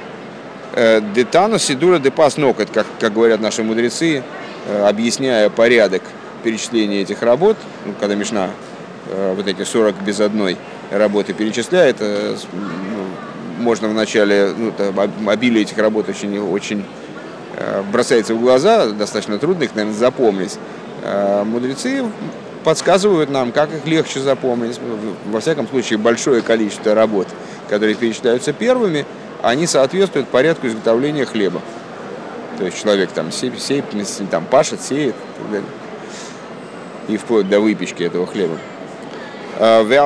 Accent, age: native, 30-49